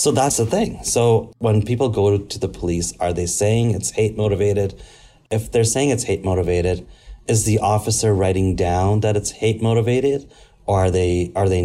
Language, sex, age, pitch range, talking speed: English, male, 30-49, 90-110 Hz, 190 wpm